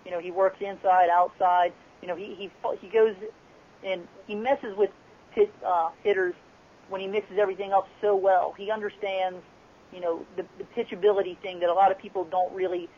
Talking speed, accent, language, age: 190 wpm, American, English, 40-59